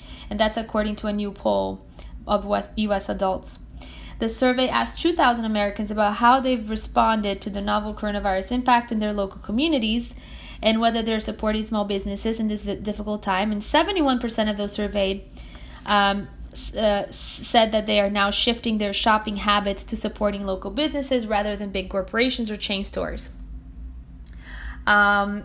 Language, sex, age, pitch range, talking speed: English, female, 20-39, 200-235 Hz, 155 wpm